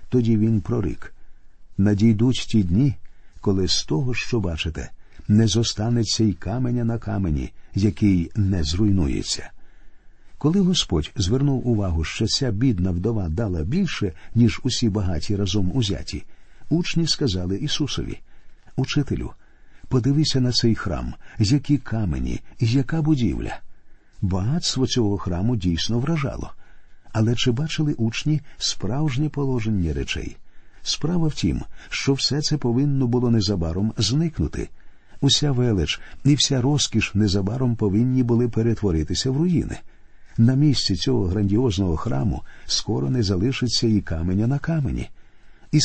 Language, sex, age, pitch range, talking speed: Ukrainian, male, 50-69, 100-130 Hz, 120 wpm